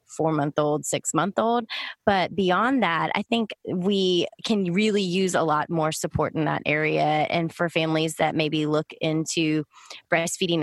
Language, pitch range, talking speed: English, 155-190 Hz, 170 wpm